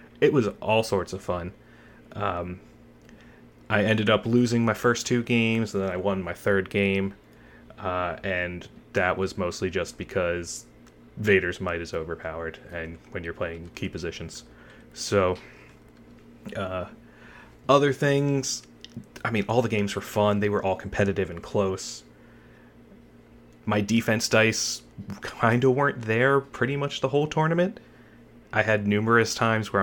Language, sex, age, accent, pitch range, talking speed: English, male, 30-49, American, 90-120 Hz, 145 wpm